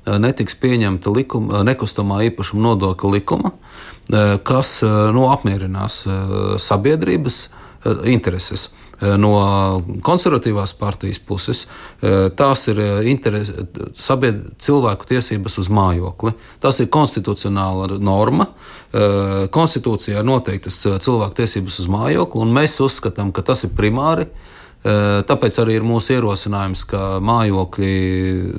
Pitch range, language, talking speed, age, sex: 95-130 Hz, Russian, 100 wpm, 40-59, male